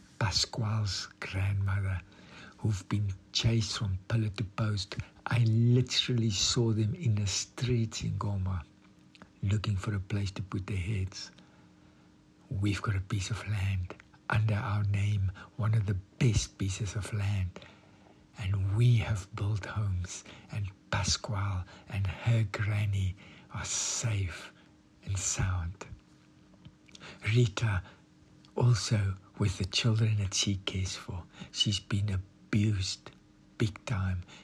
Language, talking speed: English, 120 wpm